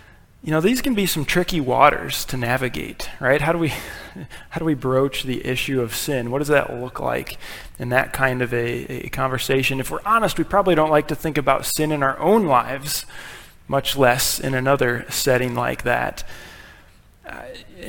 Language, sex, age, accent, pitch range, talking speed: English, male, 20-39, American, 130-155 Hz, 190 wpm